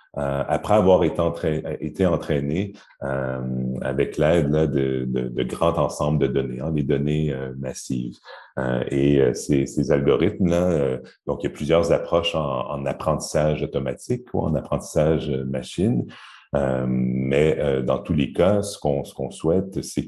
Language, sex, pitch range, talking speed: French, male, 65-80 Hz, 175 wpm